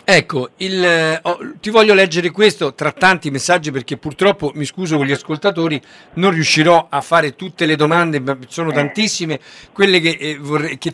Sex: male